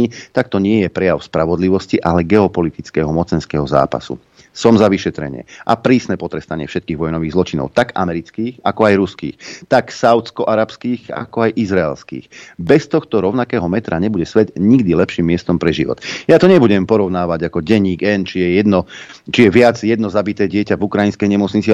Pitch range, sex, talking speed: 85-105 Hz, male, 155 wpm